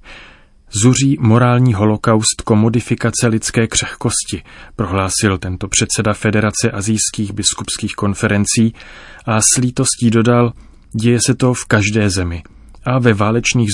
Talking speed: 115 wpm